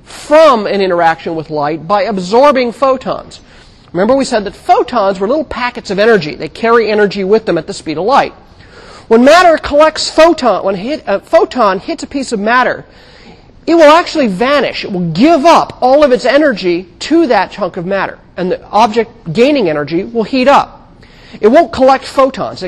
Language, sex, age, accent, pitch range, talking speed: English, male, 40-59, American, 185-270 Hz, 185 wpm